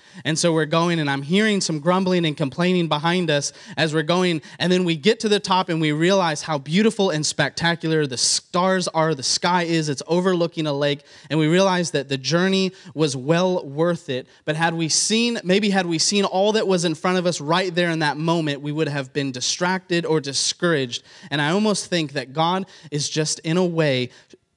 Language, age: English, 20-39